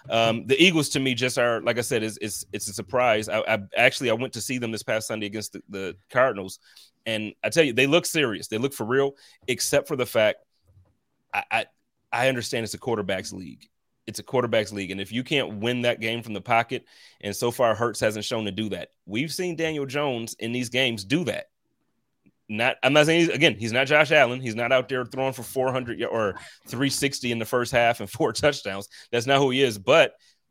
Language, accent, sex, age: English, American, male, 30-49